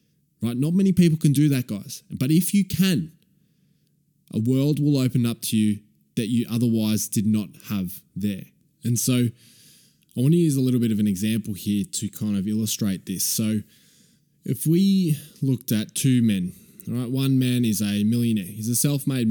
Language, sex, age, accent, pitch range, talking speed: English, male, 20-39, Australian, 110-150 Hz, 185 wpm